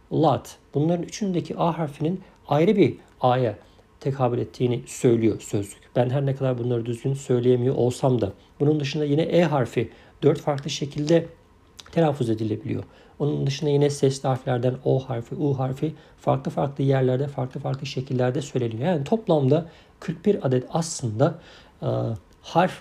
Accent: native